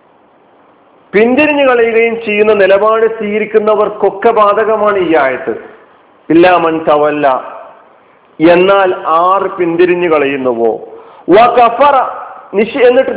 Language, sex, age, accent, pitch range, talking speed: Malayalam, male, 50-69, native, 170-235 Hz, 65 wpm